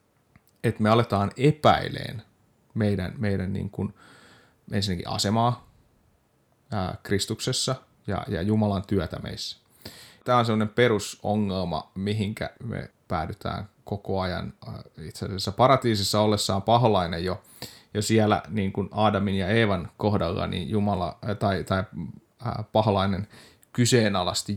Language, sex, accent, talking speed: Finnish, male, native, 110 wpm